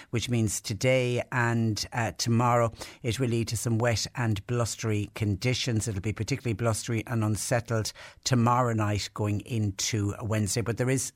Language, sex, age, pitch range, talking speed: English, female, 60-79, 110-130 Hz, 155 wpm